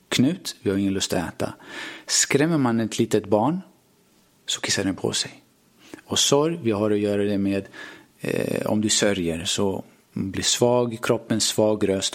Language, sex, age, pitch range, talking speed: Swedish, male, 30-49, 100-125 Hz, 175 wpm